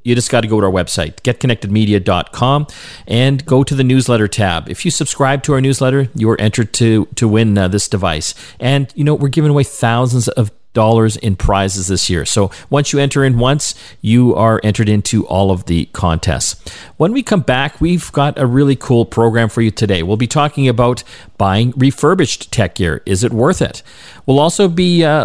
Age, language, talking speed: 40-59, English, 205 wpm